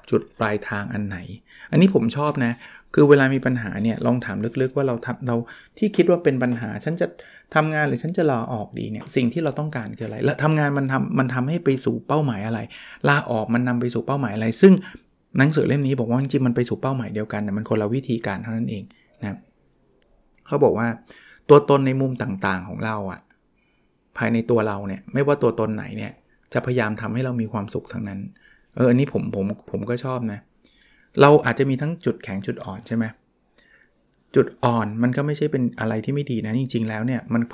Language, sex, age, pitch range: Thai, male, 20-39, 110-135 Hz